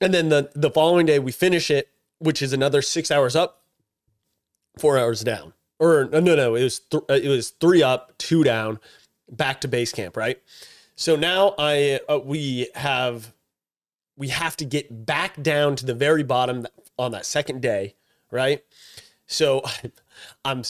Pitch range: 125-160 Hz